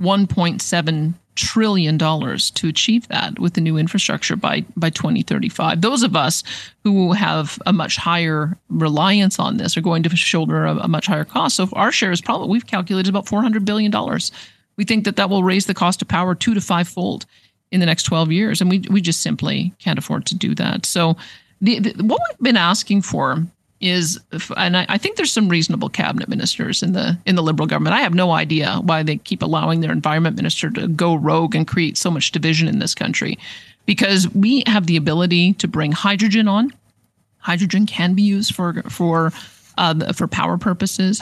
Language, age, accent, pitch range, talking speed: English, 50-69, American, 165-205 Hz, 195 wpm